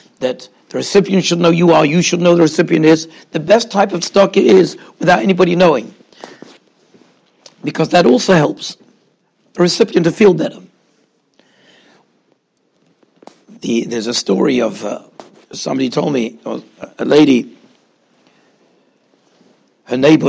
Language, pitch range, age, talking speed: English, 135-175 Hz, 60-79, 135 wpm